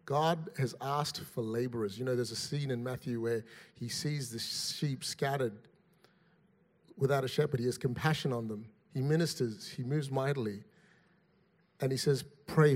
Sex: male